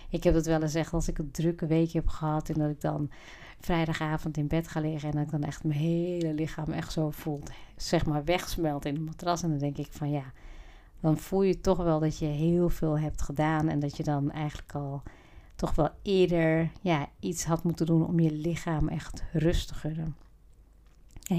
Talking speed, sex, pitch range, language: 215 wpm, female, 155-175 Hz, Dutch